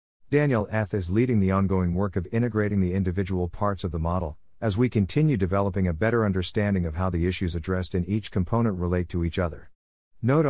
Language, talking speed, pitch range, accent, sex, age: English, 200 wpm, 90-115 Hz, American, male, 50-69